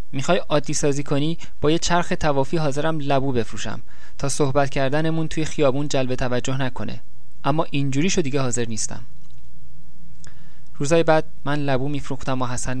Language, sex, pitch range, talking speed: Persian, male, 110-140 Hz, 140 wpm